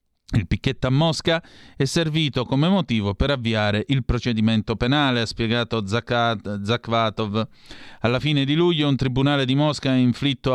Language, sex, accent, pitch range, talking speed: Italian, male, native, 110-140 Hz, 150 wpm